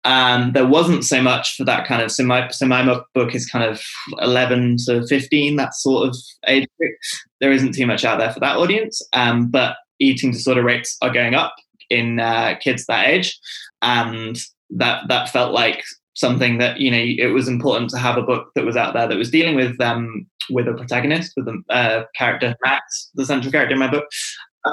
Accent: British